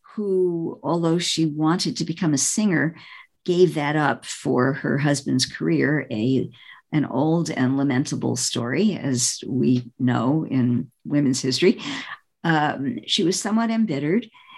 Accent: American